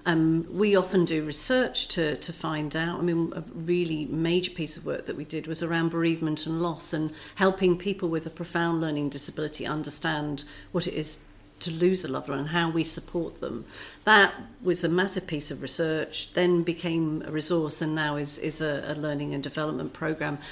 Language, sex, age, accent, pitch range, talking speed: English, female, 50-69, British, 150-175 Hz, 200 wpm